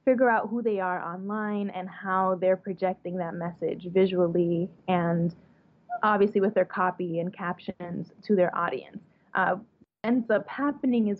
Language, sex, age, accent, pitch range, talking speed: English, female, 20-39, American, 185-210 Hz, 150 wpm